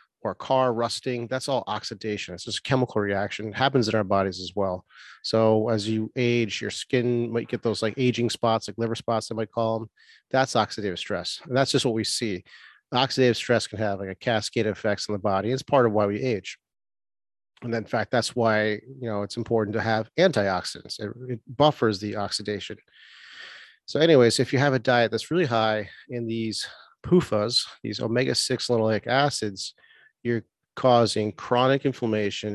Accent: American